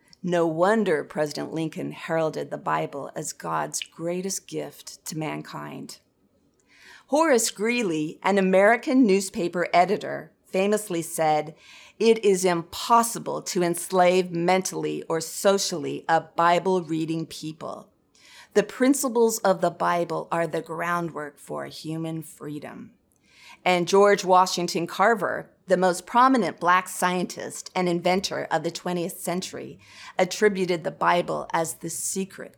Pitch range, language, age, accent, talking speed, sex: 165-195 Hz, English, 40-59, American, 120 wpm, female